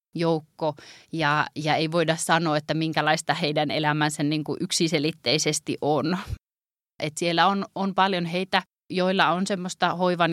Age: 30-49